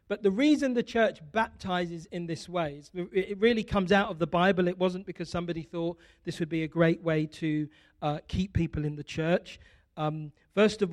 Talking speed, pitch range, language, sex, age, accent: 205 wpm, 165-195 Hz, English, male, 40-59, British